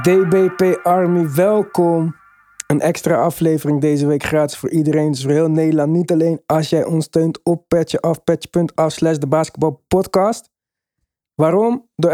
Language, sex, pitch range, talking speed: Dutch, male, 155-185 Hz, 145 wpm